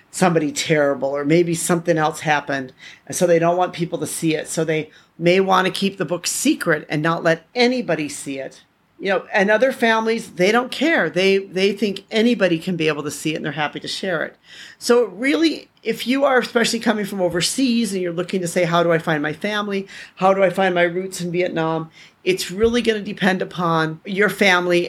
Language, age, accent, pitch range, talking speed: English, 40-59, American, 165-195 Hz, 220 wpm